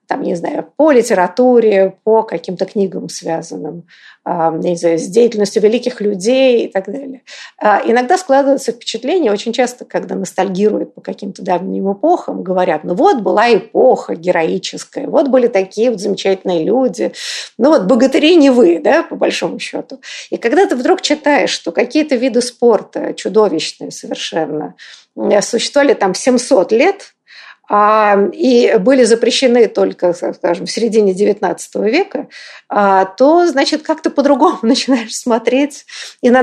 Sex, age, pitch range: female, 50-69, 195-260 Hz